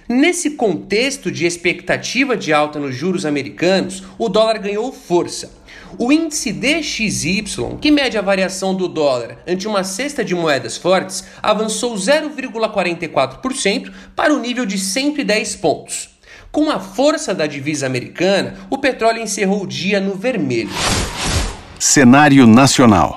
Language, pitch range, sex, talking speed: Portuguese, 175-240 Hz, male, 130 wpm